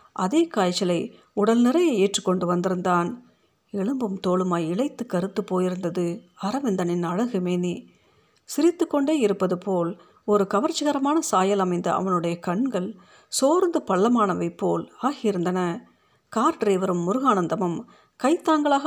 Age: 50-69